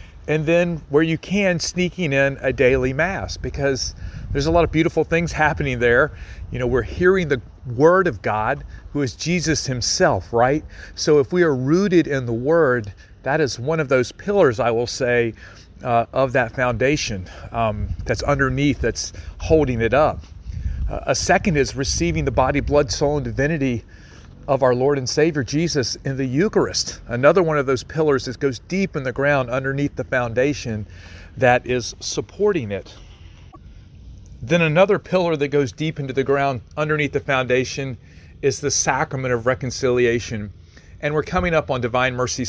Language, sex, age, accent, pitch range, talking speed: English, male, 40-59, American, 110-150 Hz, 170 wpm